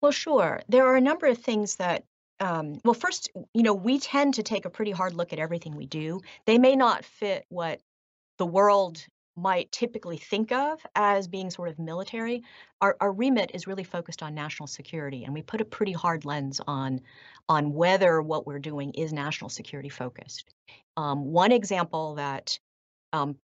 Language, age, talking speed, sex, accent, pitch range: English, 40-59, 185 wpm, female, American, 145-190 Hz